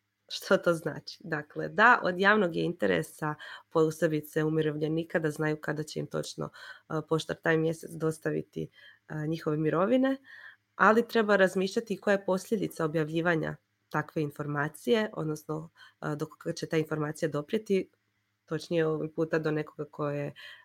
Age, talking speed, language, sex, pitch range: 20-39, 130 wpm, Croatian, female, 150-180 Hz